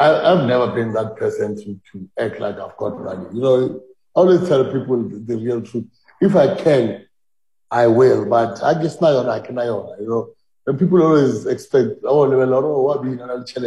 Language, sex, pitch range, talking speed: English, male, 120-160 Hz, 215 wpm